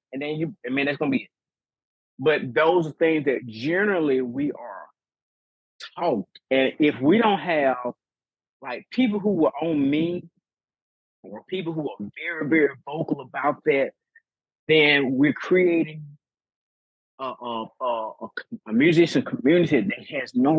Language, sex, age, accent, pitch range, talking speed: English, male, 30-49, American, 140-205 Hz, 150 wpm